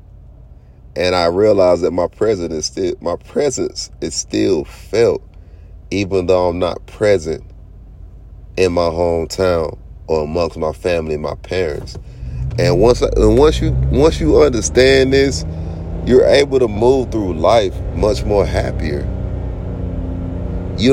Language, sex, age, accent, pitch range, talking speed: English, male, 30-49, American, 90-125 Hz, 135 wpm